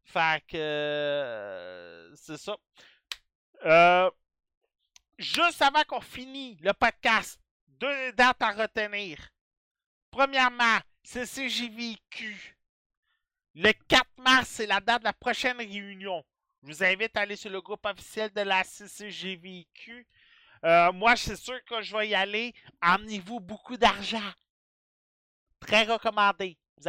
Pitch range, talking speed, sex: 190-245 Hz, 125 wpm, male